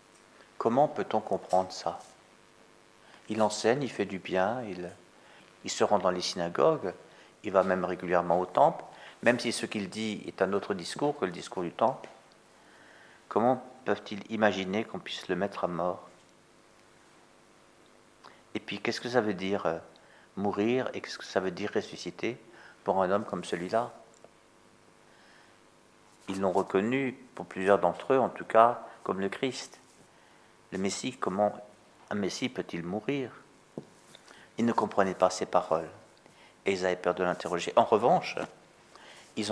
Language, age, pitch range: French, 50-69, 90-115 Hz